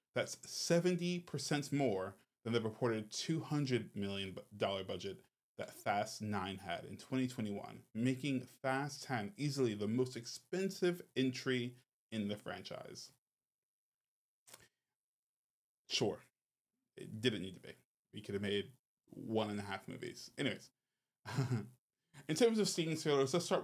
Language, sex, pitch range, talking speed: English, male, 110-150 Hz, 120 wpm